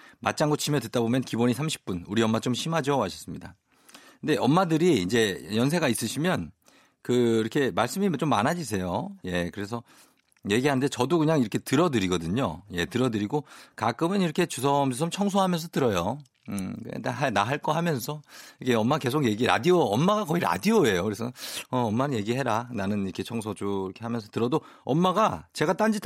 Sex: male